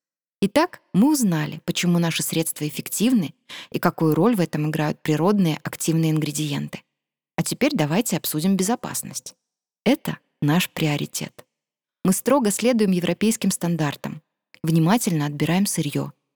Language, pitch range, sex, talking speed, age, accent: Russian, 155-205 Hz, female, 115 wpm, 20-39, native